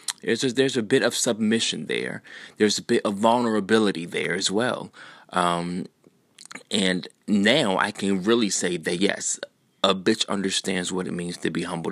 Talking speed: 160 wpm